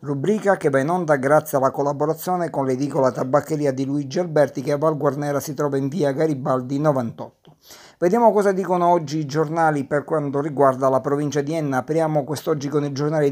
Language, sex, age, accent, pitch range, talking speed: Italian, male, 50-69, native, 140-165 Hz, 190 wpm